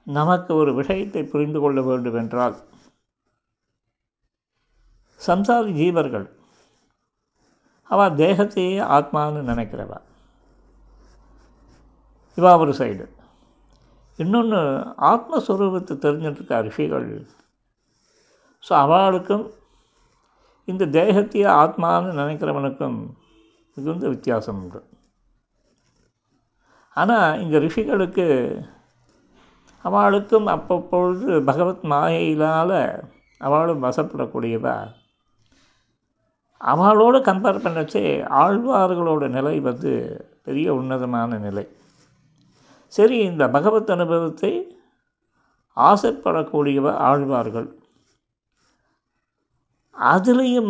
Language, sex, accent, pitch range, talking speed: Tamil, male, native, 140-200 Hz, 60 wpm